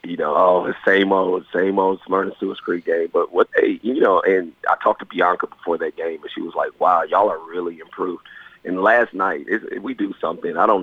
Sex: male